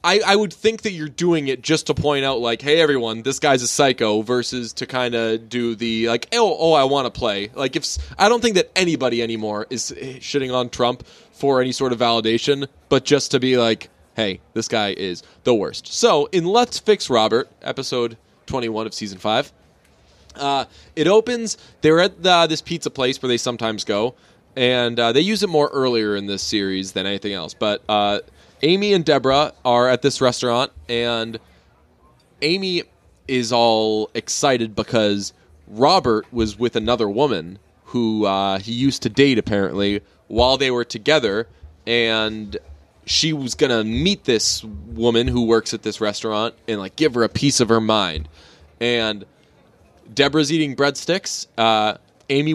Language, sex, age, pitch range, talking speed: English, male, 20-39, 110-140 Hz, 175 wpm